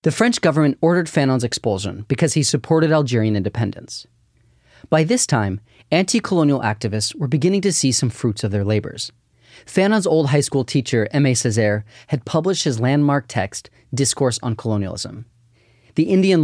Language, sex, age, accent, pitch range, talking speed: English, male, 30-49, American, 115-155 Hz, 155 wpm